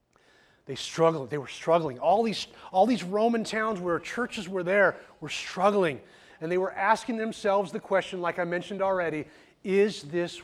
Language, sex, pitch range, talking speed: English, male, 150-205 Hz, 170 wpm